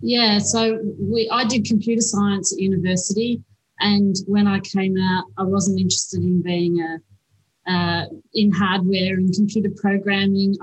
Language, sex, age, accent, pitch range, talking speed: English, female, 30-49, Australian, 185-205 Hz, 145 wpm